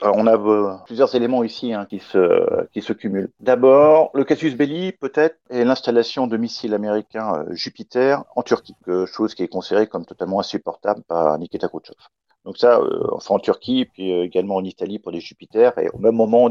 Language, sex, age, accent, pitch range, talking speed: French, male, 50-69, French, 100-140 Hz, 185 wpm